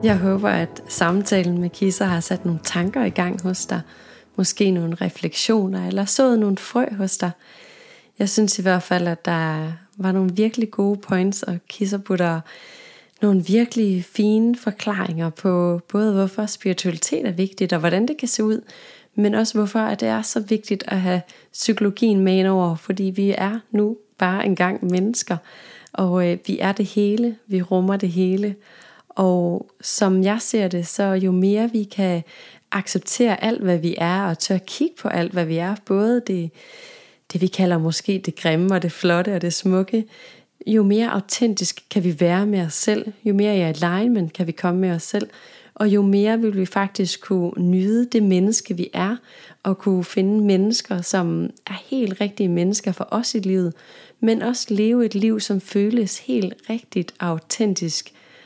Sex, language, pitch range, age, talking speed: female, Danish, 180-215 Hz, 30-49, 180 wpm